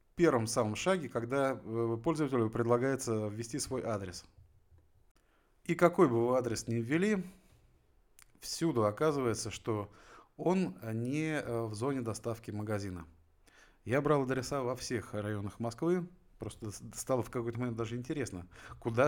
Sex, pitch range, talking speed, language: male, 105-145 Hz, 130 wpm, Russian